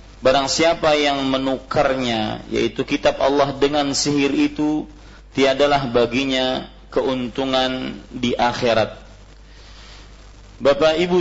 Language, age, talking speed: Malay, 40-59, 90 wpm